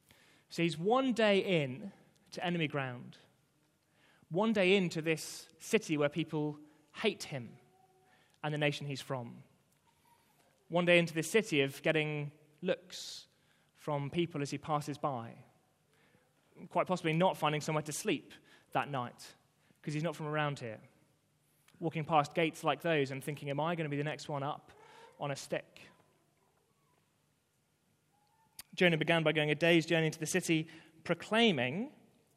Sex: male